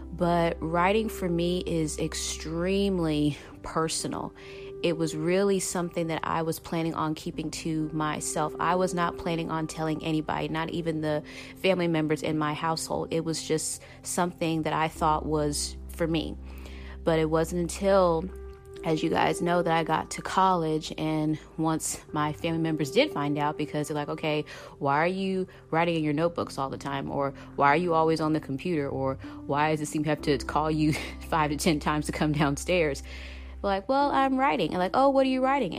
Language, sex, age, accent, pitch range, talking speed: English, female, 30-49, American, 150-190 Hz, 195 wpm